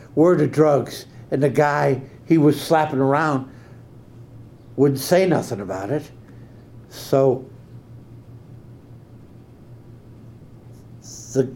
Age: 70-89